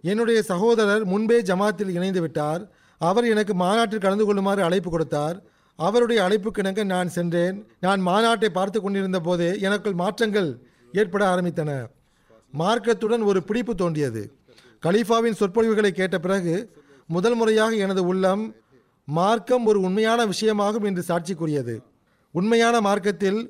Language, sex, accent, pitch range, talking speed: Tamil, male, native, 170-220 Hz, 115 wpm